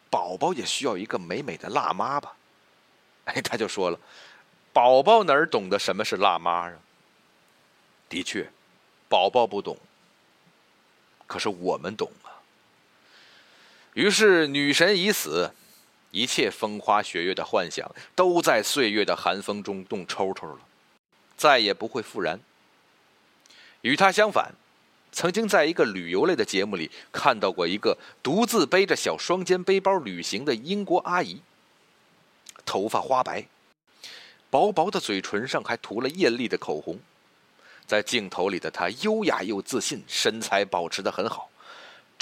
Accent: native